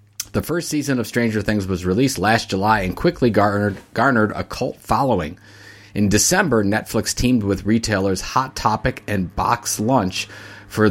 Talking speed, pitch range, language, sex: 160 wpm, 90-110 Hz, English, male